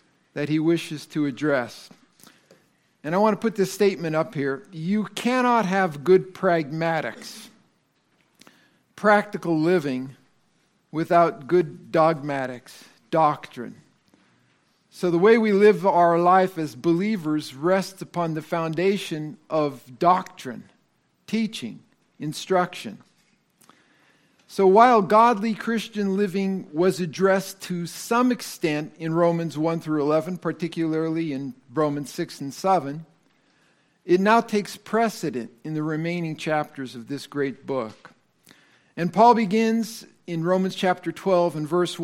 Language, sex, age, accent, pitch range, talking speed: English, male, 50-69, American, 155-200 Hz, 120 wpm